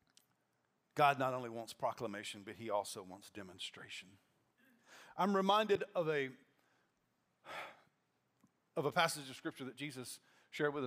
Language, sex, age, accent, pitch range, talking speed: English, male, 50-69, American, 130-175 Hz, 120 wpm